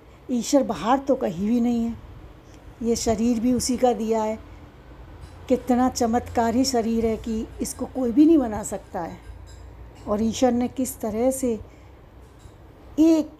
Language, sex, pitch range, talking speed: Hindi, female, 225-275 Hz, 150 wpm